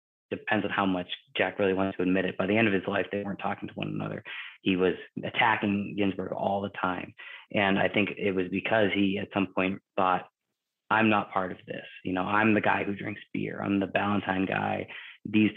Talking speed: 225 wpm